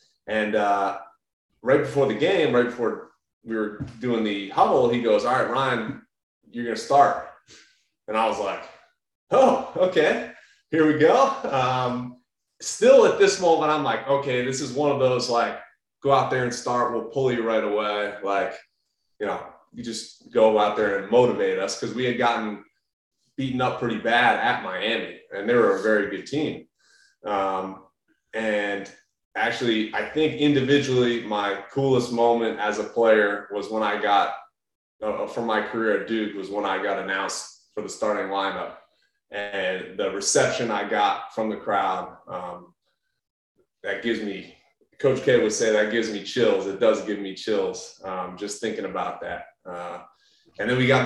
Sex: male